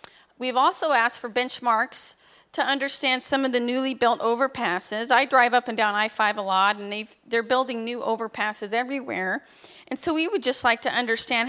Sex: female